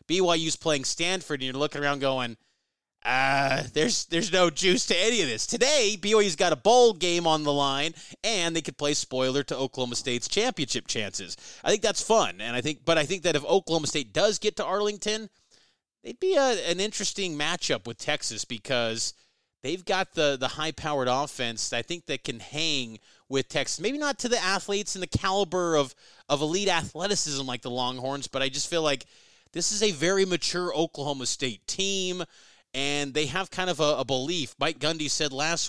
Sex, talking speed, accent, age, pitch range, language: male, 200 wpm, American, 30-49, 130-175 Hz, English